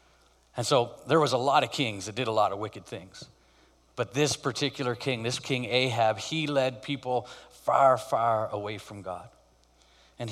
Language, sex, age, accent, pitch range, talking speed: English, male, 40-59, American, 105-135 Hz, 180 wpm